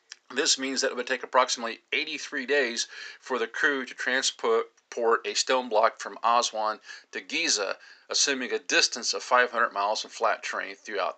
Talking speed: 165 wpm